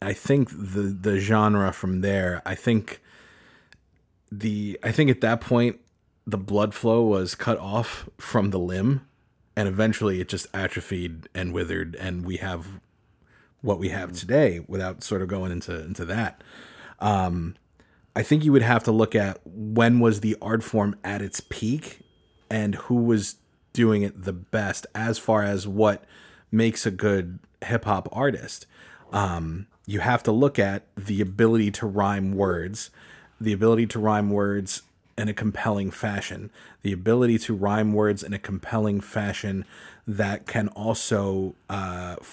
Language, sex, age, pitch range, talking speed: English, male, 30-49, 95-110 Hz, 160 wpm